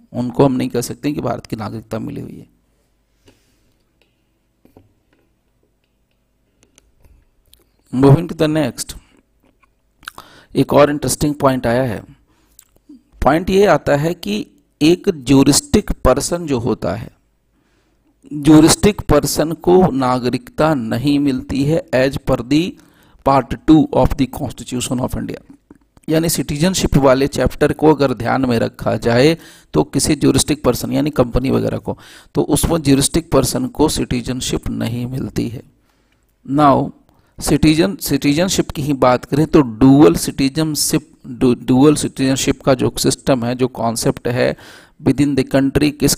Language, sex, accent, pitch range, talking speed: Hindi, male, native, 125-150 Hz, 125 wpm